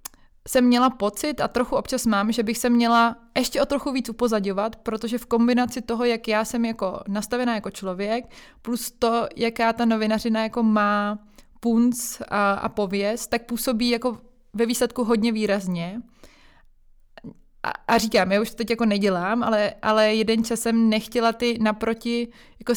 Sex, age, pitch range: female, 20-39, 210-235 Hz